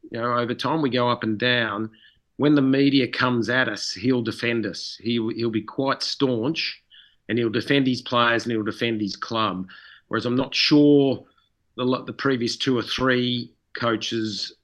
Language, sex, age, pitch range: English, male, 40-59, 115-135 Hz